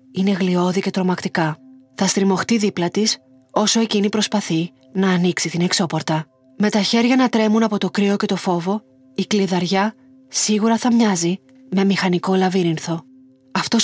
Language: Greek